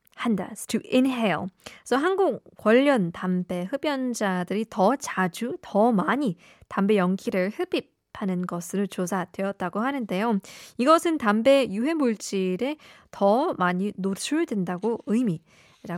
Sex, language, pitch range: female, Korean, 185-250 Hz